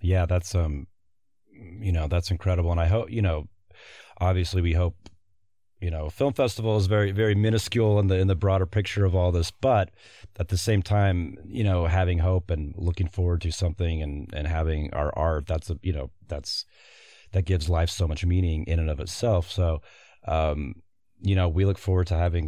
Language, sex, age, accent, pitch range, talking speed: English, male, 30-49, American, 80-95 Hz, 200 wpm